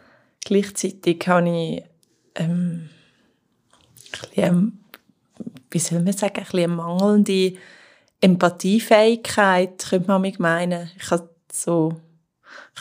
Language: German